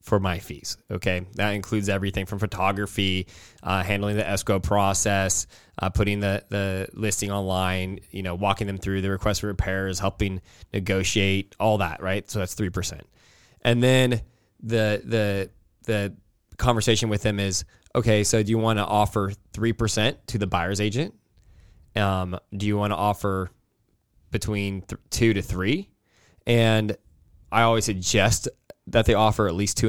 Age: 20-39